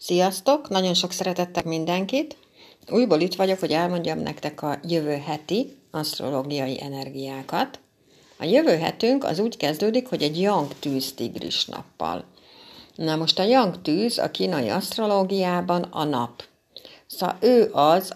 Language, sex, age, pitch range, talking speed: Hungarian, female, 60-79, 150-185 Hz, 130 wpm